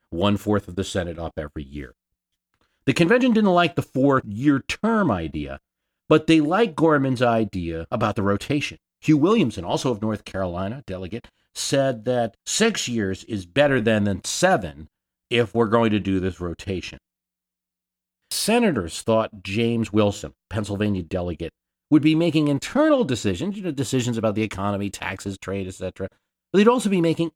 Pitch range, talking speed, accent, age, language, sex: 95-150 Hz, 145 wpm, American, 50-69, English, male